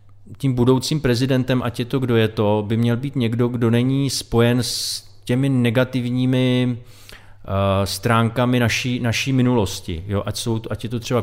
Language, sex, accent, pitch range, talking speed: Czech, male, native, 105-120 Hz, 165 wpm